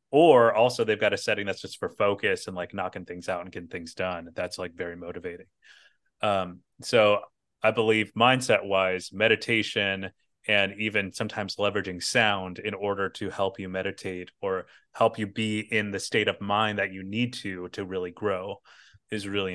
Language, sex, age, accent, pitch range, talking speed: English, male, 30-49, American, 95-110 Hz, 180 wpm